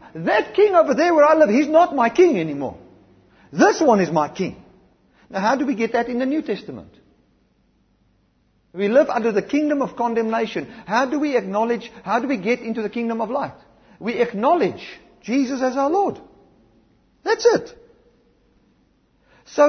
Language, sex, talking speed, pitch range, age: English, male, 170 wpm, 160-255 Hz, 50-69